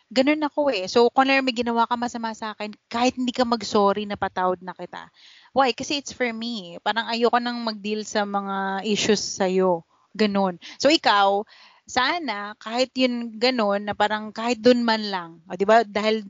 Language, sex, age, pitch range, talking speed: Filipino, female, 20-39, 200-250 Hz, 180 wpm